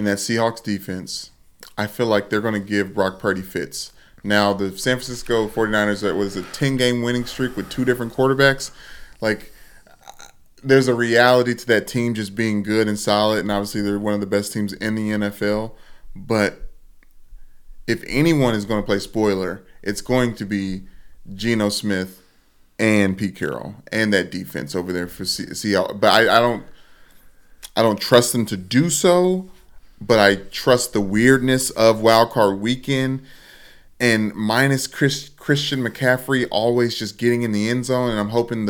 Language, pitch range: English, 100-120 Hz